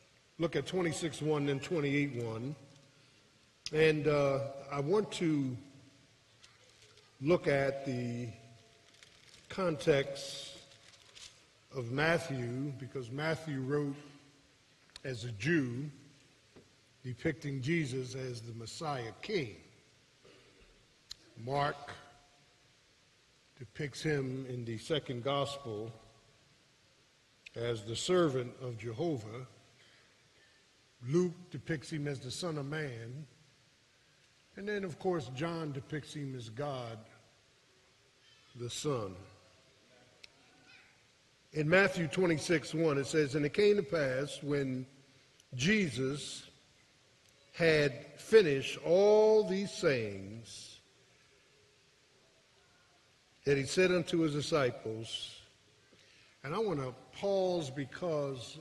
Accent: American